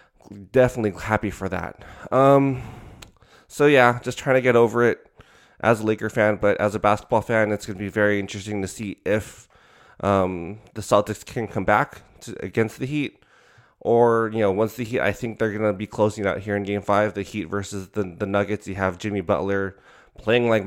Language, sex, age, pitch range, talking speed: English, male, 20-39, 100-115 Hz, 205 wpm